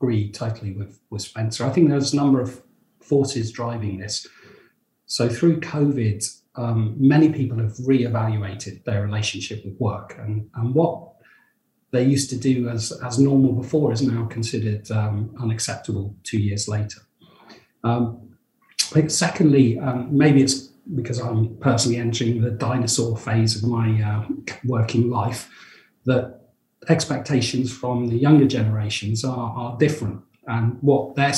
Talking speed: 140 wpm